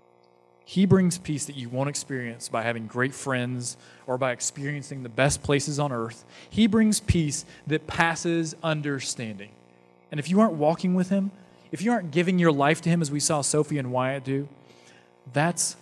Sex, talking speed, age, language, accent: male, 180 wpm, 30-49, English, American